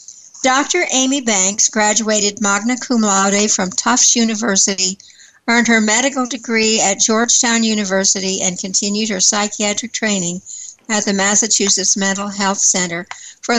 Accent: American